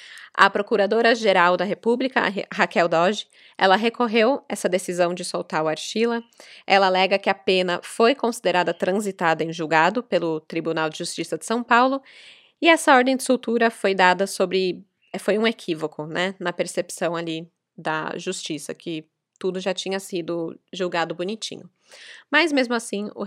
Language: Portuguese